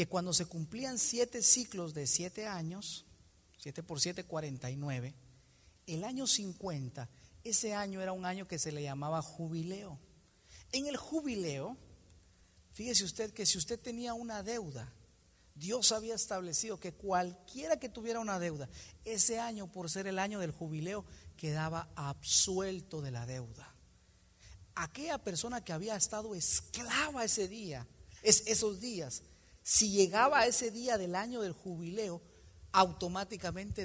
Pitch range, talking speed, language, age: 150-220 Hz, 140 wpm, Spanish, 50-69